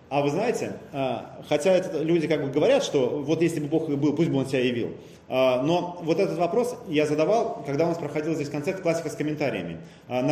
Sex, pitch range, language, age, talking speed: male, 145-180 Hz, Russian, 30-49, 210 wpm